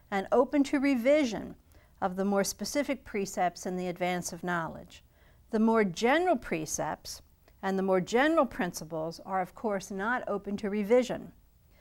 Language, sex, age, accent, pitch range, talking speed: English, female, 50-69, American, 195-260 Hz, 150 wpm